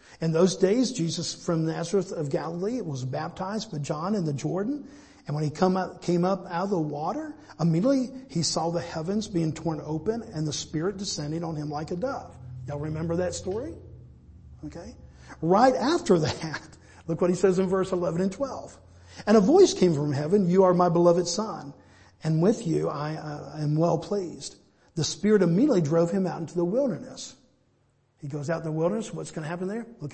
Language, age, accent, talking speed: English, 50-69, American, 195 wpm